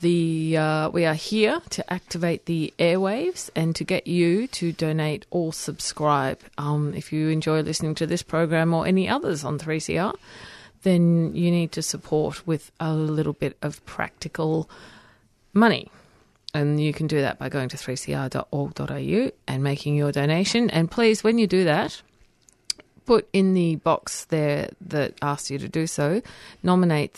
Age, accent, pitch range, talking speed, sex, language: 40-59, Australian, 145-175 Hz, 160 wpm, female, English